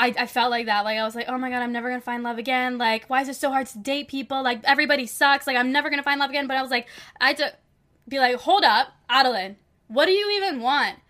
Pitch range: 230-265 Hz